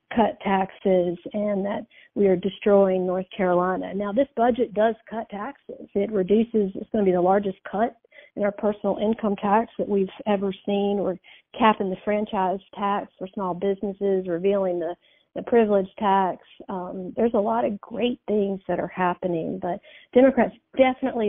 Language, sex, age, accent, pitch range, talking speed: English, female, 40-59, American, 195-225 Hz, 165 wpm